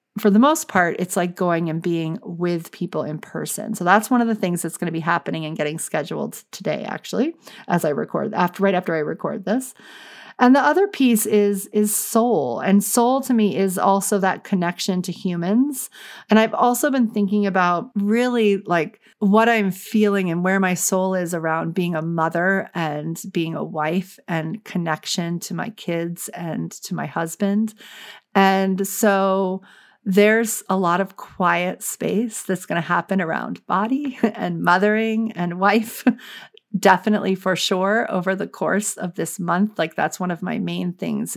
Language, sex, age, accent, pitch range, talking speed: English, female, 40-59, American, 175-220 Hz, 175 wpm